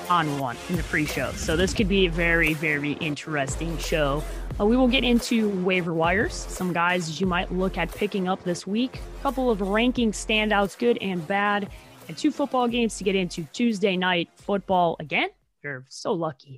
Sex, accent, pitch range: female, American, 160-230 Hz